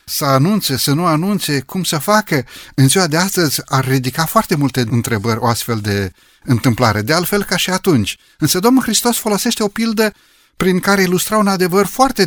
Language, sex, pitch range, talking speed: Romanian, male, 120-165 Hz, 185 wpm